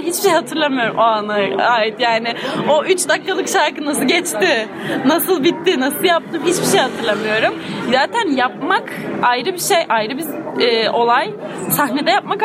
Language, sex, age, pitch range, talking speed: Turkish, female, 20-39, 235-330 Hz, 150 wpm